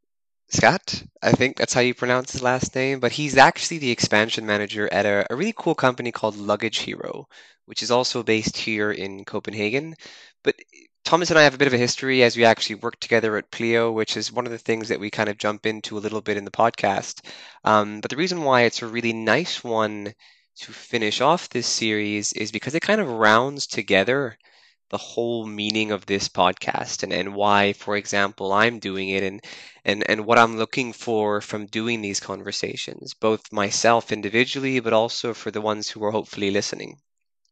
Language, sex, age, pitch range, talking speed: English, male, 20-39, 105-130 Hz, 200 wpm